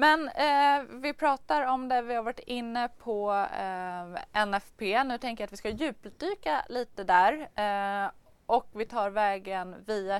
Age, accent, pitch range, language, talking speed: 20-39, native, 200-265 Hz, Swedish, 165 wpm